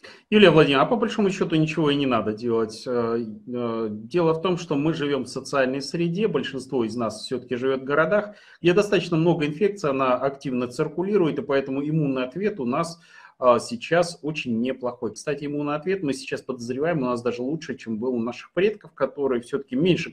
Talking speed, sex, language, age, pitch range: 180 wpm, male, Russian, 30-49, 125-170 Hz